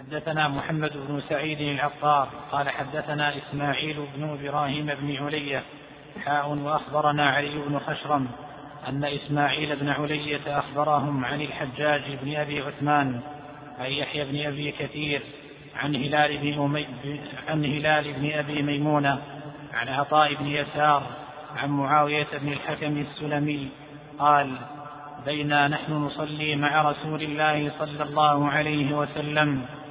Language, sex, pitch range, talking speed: Arabic, male, 145-150 Hz, 120 wpm